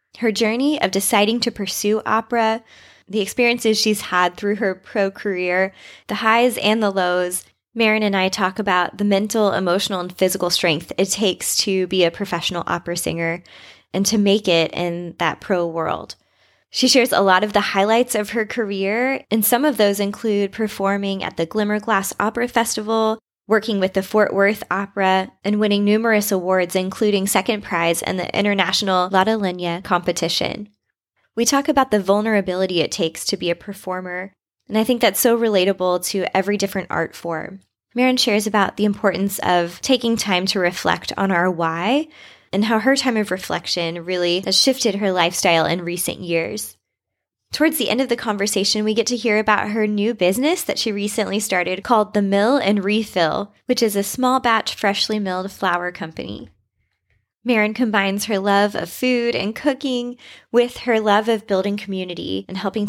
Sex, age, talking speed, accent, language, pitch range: female, 20-39, 175 wpm, American, English, 185-220 Hz